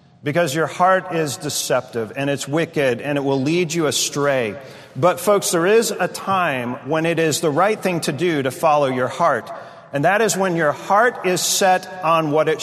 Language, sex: English, male